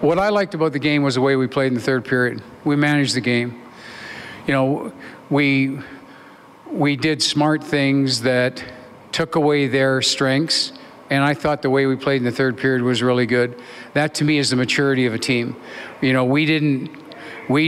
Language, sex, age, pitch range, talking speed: English, male, 50-69, 130-145 Hz, 200 wpm